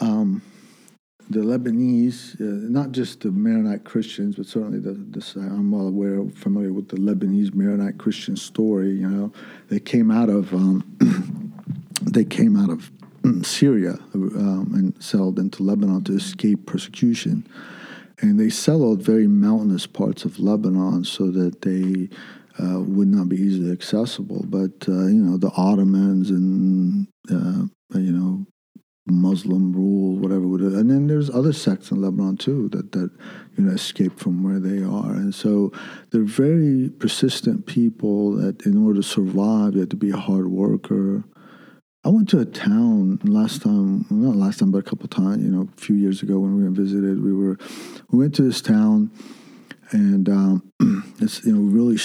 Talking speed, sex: 170 wpm, male